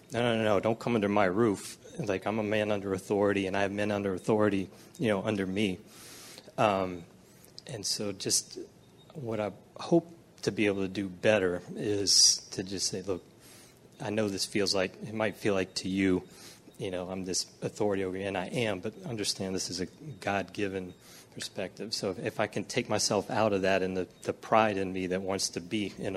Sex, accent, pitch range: male, American, 95-105 Hz